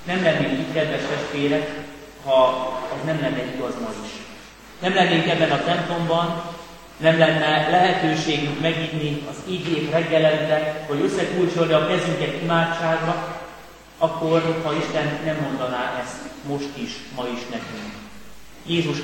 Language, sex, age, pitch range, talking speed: Hungarian, male, 30-49, 145-170 Hz, 130 wpm